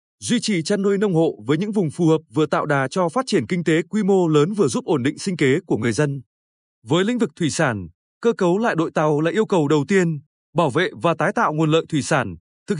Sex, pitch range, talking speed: male, 150-195 Hz, 265 wpm